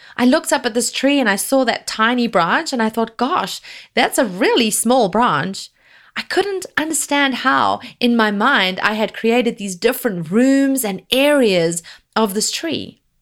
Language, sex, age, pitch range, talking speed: English, female, 30-49, 190-275 Hz, 175 wpm